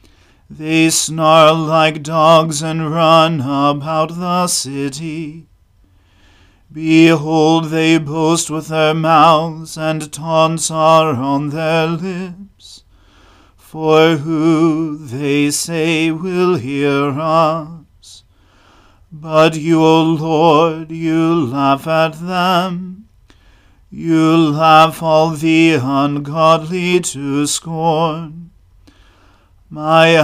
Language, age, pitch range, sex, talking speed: English, 40-59, 140-160 Hz, male, 85 wpm